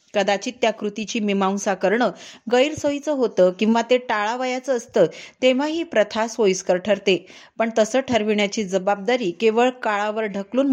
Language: Marathi